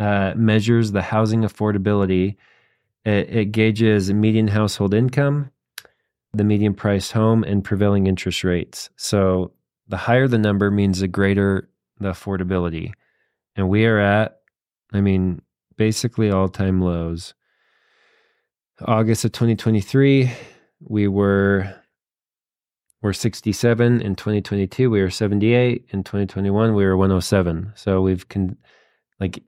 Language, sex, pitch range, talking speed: English, male, 95-110 Hz, 120 wpm